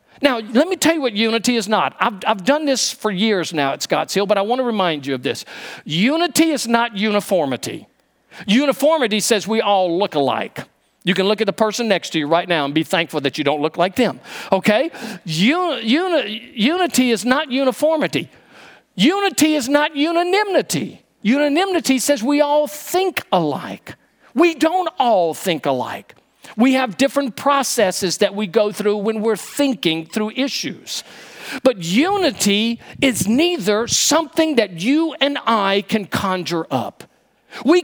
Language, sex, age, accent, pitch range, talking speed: English, male, 50-69, American, 190-275 Hz, 165 wpm